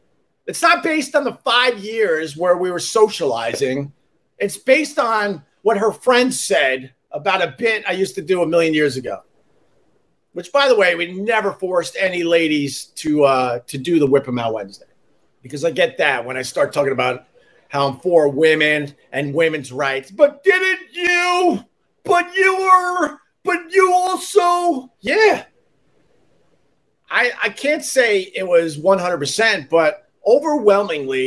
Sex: male